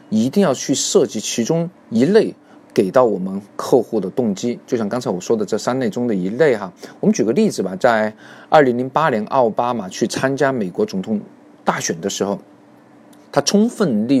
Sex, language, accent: male, Chinese, native